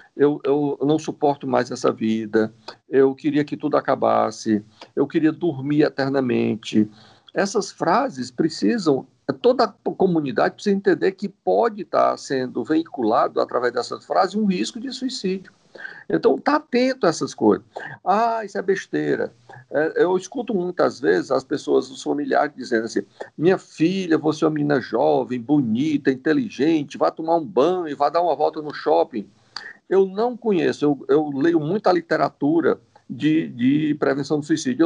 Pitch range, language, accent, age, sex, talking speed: 135-210 Hz, Portuguese, Brazilian, 50-69, male, 155 wpm